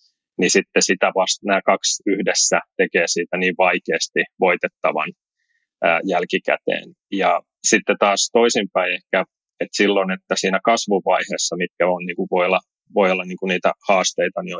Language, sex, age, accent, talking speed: Finnish, male, 30-49, native, 115 wpm